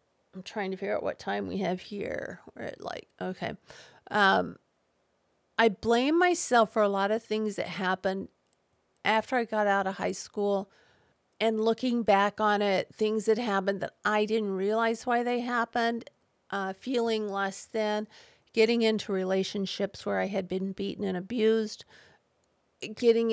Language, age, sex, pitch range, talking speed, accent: English, 50-69, female, 195-220 Hz, 160 wpm, American